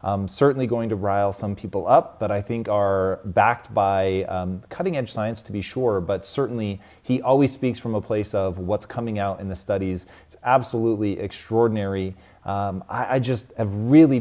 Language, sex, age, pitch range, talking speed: English, male, 30-49, 100-115 Hz, 185 wpm